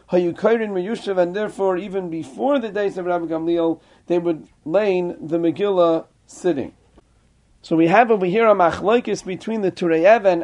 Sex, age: male, 40-59